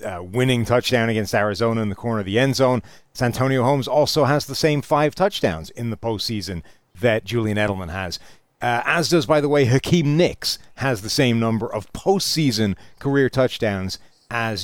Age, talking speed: 40-59, 180 wpm